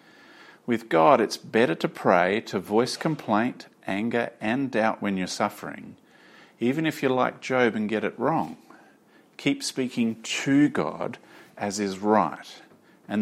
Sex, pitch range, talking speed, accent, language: male, 105-125 Hz, 145 wpm, Australian, English